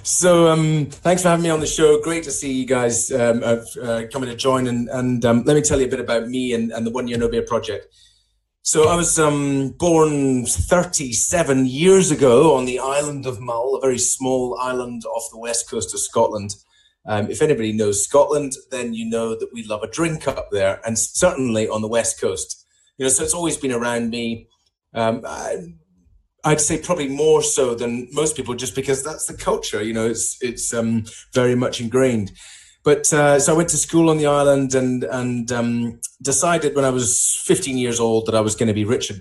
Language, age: English, 30-49